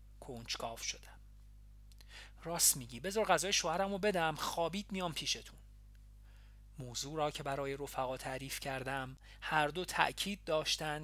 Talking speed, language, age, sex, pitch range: 125 wpm, Persian, 40-59, male, 130-190 Hz